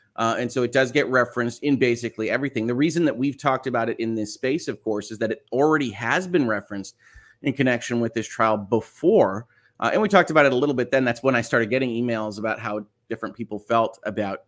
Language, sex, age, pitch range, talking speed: English, male, 30-49, 110-135 Hz, 235 wpm